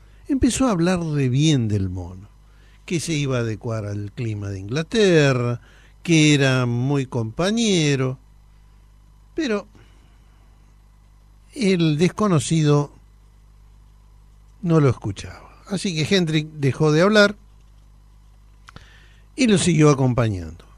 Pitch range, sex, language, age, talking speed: 105-140 Hz, male, Spanish, 60-79, 105 wpm